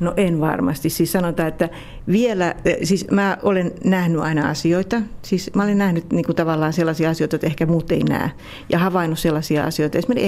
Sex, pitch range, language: female, 155-195 Hz, Finnish